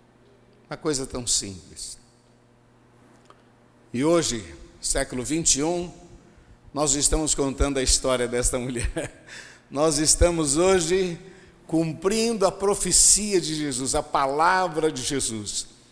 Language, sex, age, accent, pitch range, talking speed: Portuguese, male, 60-79, Brazilian, 120-155 Hz, 100 wpm